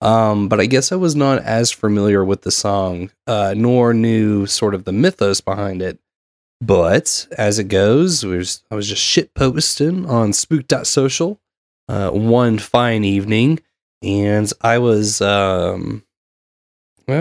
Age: 20-39